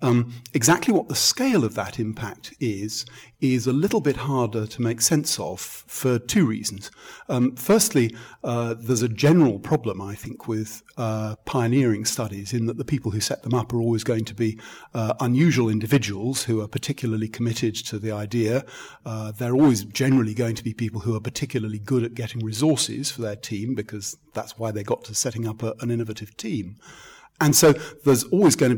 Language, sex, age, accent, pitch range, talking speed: English, male, 50-69, British, 110-130 Hz, 195 wpm